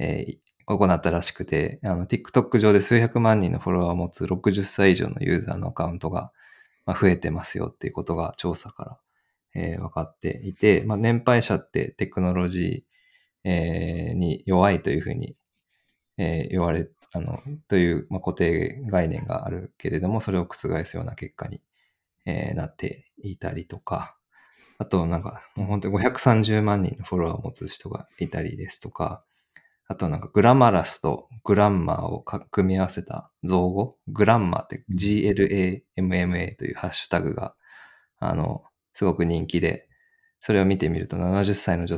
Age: 20-39